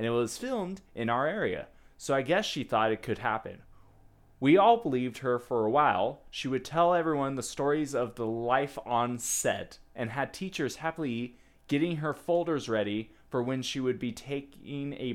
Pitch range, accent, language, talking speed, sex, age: 115-150 Hz, American, English, 190 wpm, male, 20-39